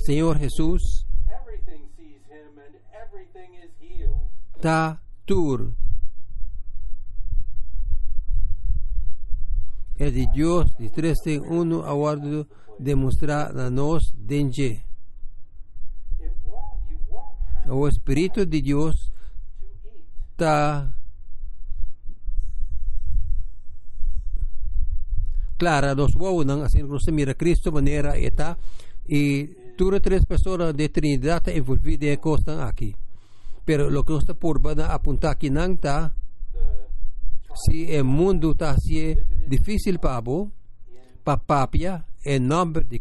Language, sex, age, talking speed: English, male, 50-69, 100 wpm